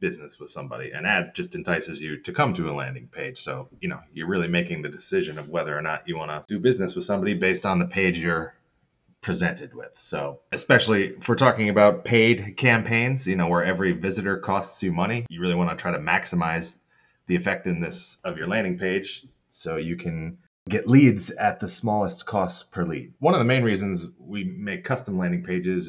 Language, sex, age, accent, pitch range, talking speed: English, male, 30-49, American, 85-115 Hz, 210 wpm